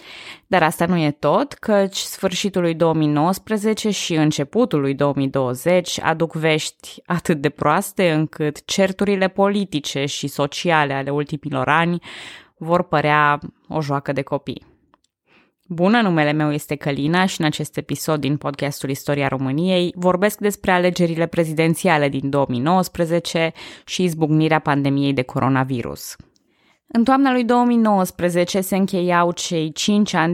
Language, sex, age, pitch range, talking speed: Romanian, female, 20-39, 145-185 Hz, 130 wpm